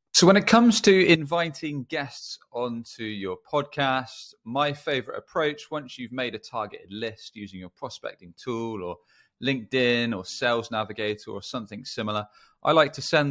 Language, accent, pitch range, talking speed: English, British, 95-130 Hz, 160 wpm